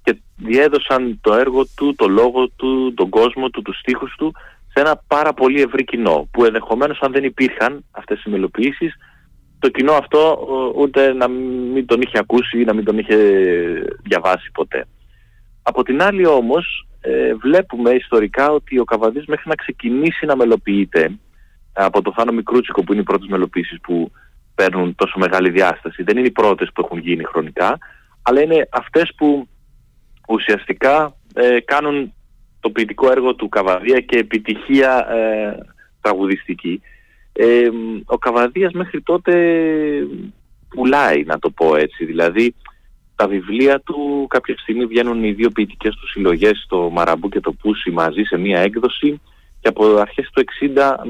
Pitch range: 105-135 Hz